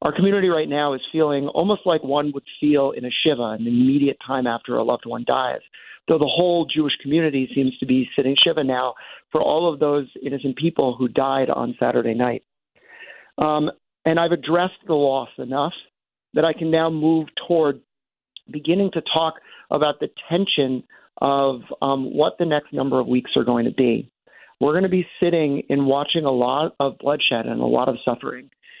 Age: 40-59